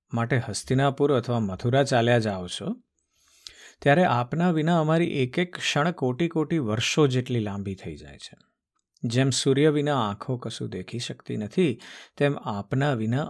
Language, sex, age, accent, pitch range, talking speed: Gujarati, male, 50-69, native, 110-145 Hz, 150 wpm